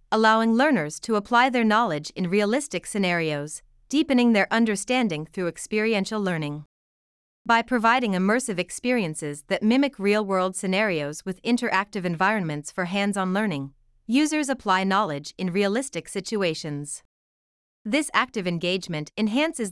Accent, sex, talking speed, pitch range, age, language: American, female, 120 wpm, 175-230 Hz, 30-49, English